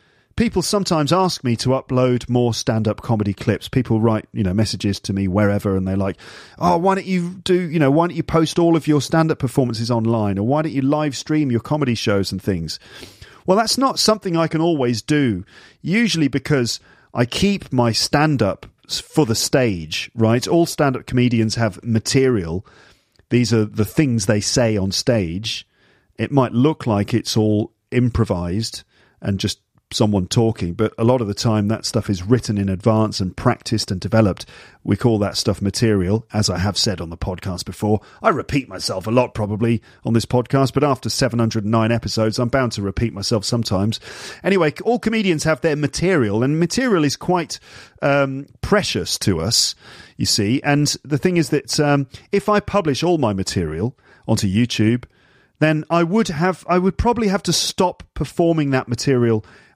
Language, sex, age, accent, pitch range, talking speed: English, male, 40-59, British, 105-150 Hz, 185 wpm